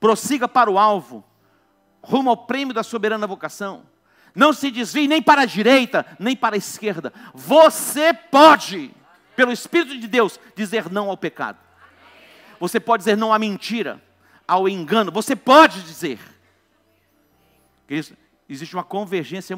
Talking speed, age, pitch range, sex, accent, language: 140 wpm, 50-69, 190-275 Hz, male, Brazilian, Portuguese